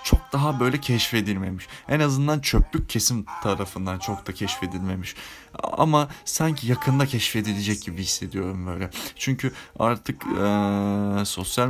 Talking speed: 120 wpm